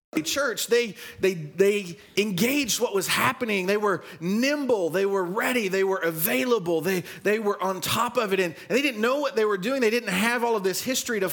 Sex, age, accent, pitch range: male, 30-49, American, 190-240 Hz